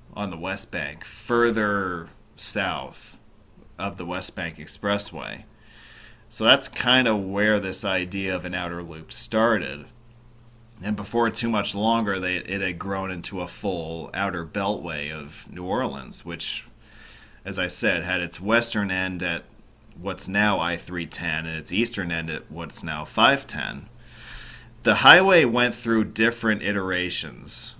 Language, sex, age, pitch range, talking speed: English, male, 30-49, 90-115 Hz, 140 wpm